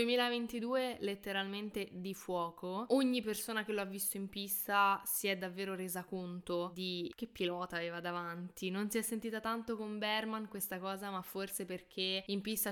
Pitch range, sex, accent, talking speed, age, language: 185-210 Hz, female, native, 170 wpm, 10-29, Italian